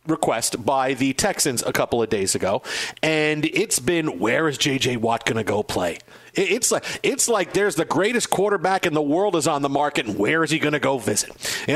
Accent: American